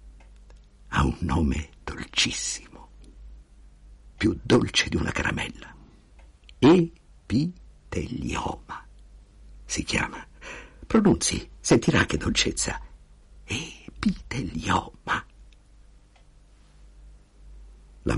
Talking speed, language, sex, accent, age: 60 wpm, Italian, male, native, 60-79